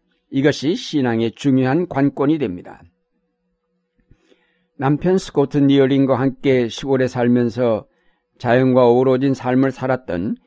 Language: Korean